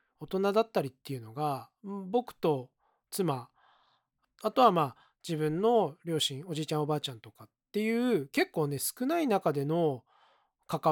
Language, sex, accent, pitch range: Japanese, male, native, 140-195 Hz